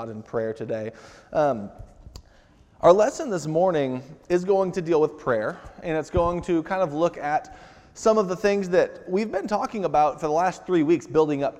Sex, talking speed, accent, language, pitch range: male, 195 wpm, American, English, 115-155 Hz